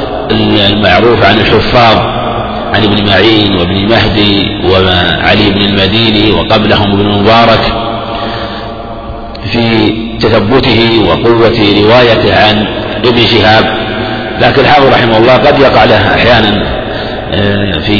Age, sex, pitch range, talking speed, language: 50-69, male, 105-120 Hz, 100 wpm, Arabic